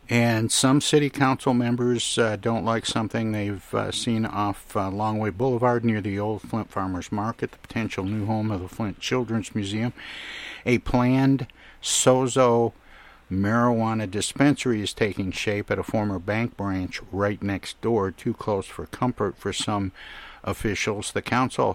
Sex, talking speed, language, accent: male, 155 wpm, English, American